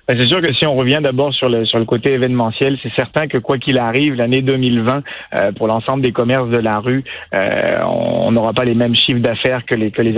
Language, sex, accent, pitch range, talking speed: French, male, French, 120-140 Hz, 240 wpm